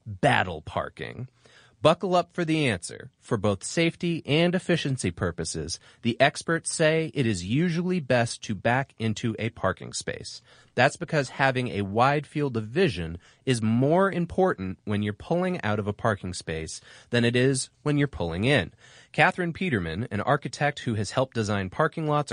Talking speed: 165 wpm